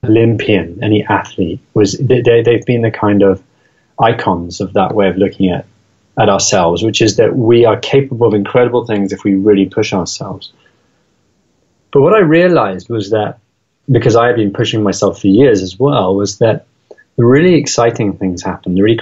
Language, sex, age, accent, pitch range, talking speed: English, male, 30-49, British, 105-125 Hz, 185 wpm